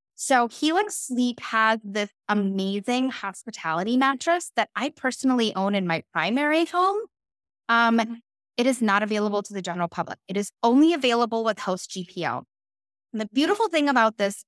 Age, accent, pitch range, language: 10-29, American, 190-275 Hz, English